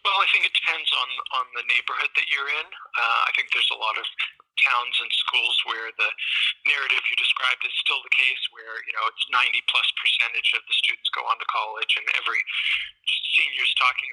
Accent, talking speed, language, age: American, 210 wpm, English, 40-59